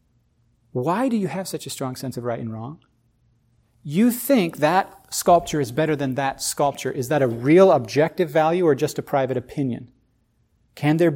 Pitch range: 120-160 Hz